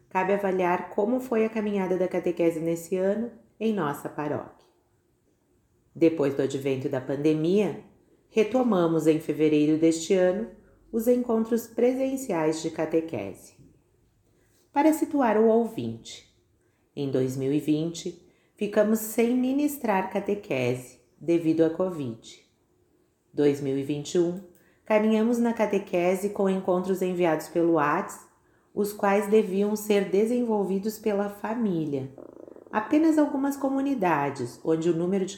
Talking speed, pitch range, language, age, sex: 110 wpm, 150-210 Hz, Portuguese, 40-59, female